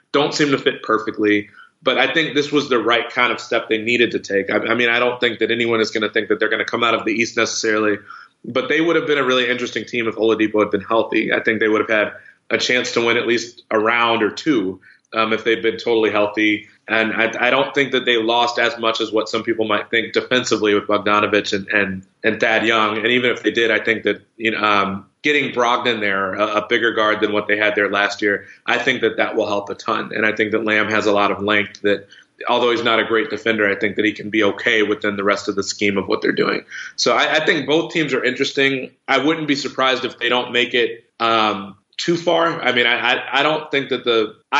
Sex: male